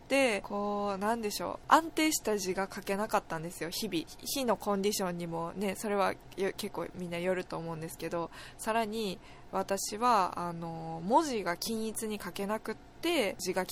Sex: female